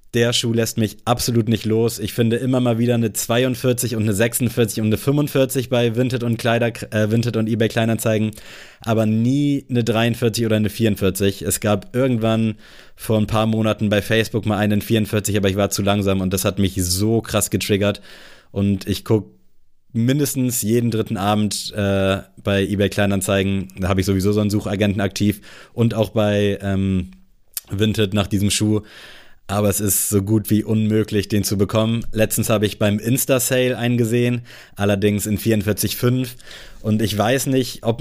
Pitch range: 105-120 Hz